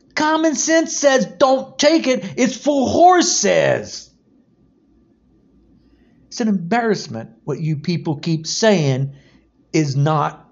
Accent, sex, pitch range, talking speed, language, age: American, male, 160-260 Hz, 110 wpm, English, 50-69